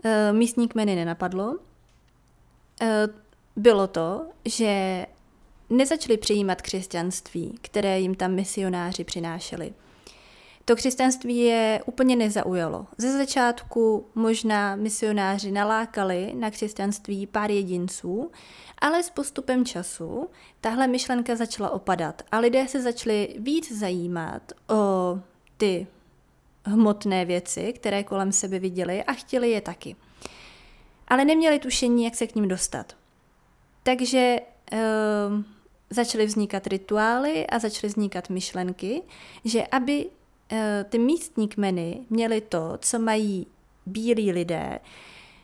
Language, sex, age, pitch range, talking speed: Czech, female, 30-49, 190-235 Hz, 105 wpm